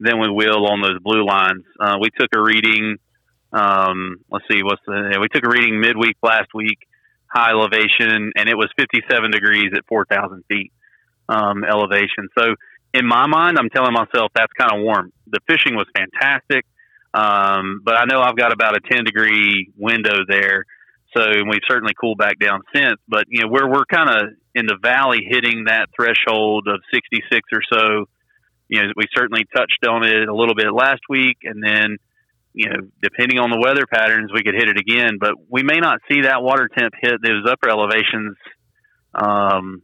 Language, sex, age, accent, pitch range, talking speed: English, male, 30-49, American, 105-115 Hz, 190 wpm